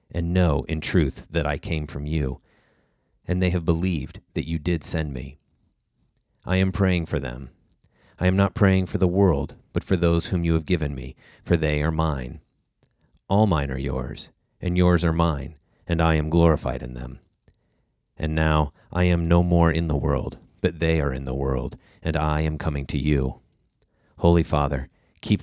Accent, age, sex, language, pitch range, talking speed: American, 40-59, male, English, 70-90 Hz, 190 wpm